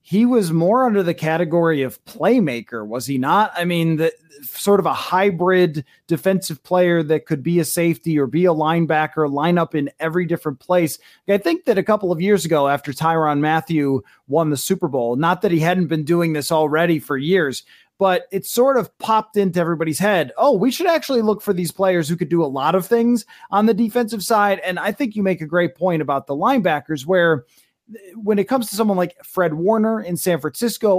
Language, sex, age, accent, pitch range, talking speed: English, male, 30-49, American, 155-200 Hz, 210 wpm